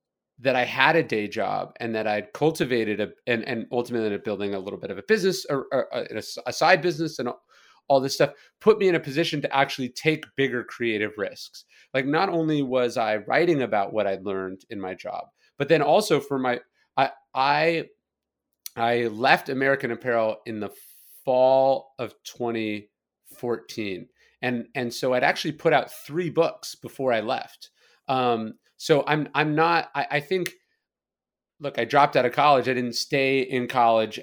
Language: English